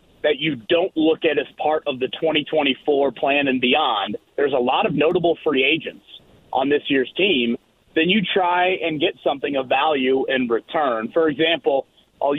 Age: 30-49